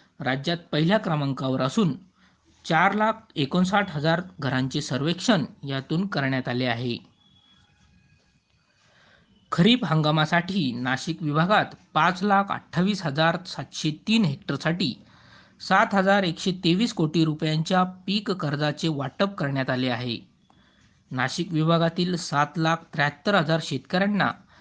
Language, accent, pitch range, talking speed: Marathi, native, 140-180 Hz, 90 wpm